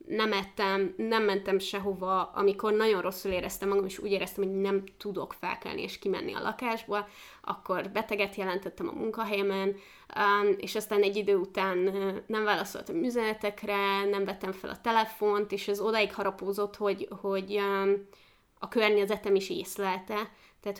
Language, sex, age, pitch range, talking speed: Hungarian, female, 20-39, 195-220 Hz, 145 wpm